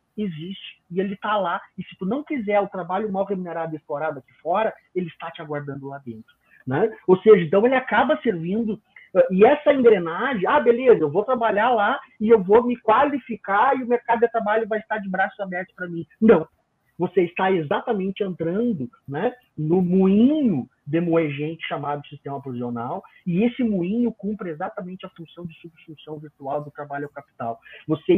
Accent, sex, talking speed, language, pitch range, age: Brazilian, male, 180 wpm, Portuguese, 135-195 Hz, 30-49